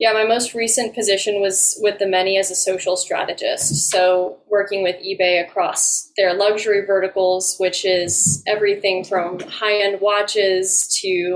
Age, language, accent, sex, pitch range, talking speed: 10-29, English, American, female, 185-210 Hz, 155 wpm